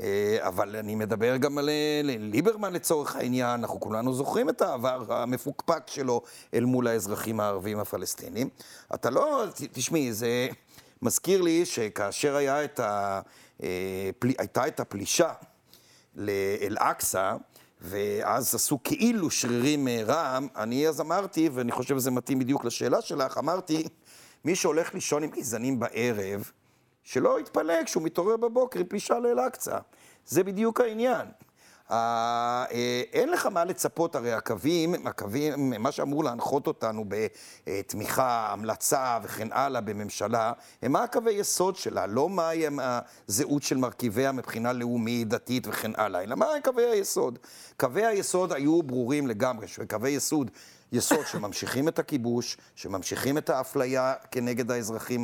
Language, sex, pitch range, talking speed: Hebrew, male, 115-160 Hz, 130 wpm